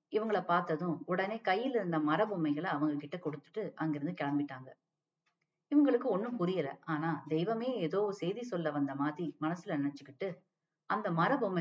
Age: 30-49